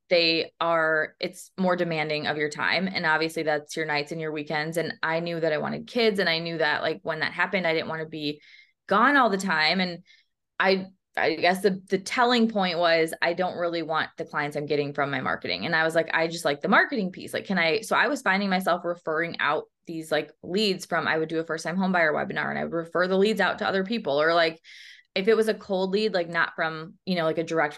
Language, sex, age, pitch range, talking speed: English, female, 20-39, 160-195 Hz, 255 wpm